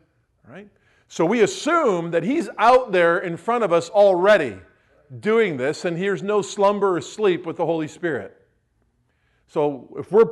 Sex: male